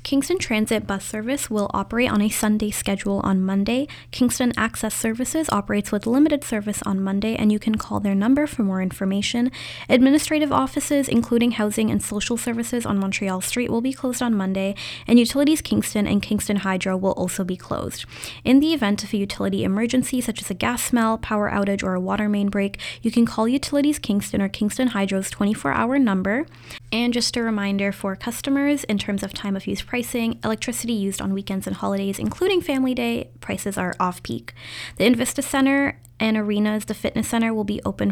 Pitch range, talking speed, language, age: 195-245 Hz, 190 wpm, English, 20-39